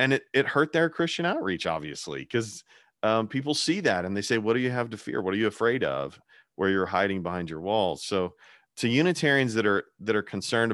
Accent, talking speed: American, 230 wpm